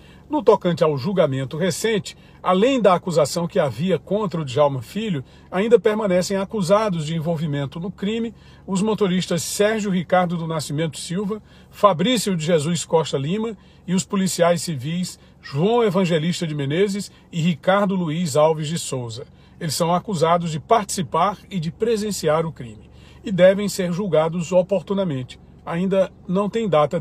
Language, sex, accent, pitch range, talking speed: Portuguese, male, Brazilian, 160-200 Hz, 145 wpm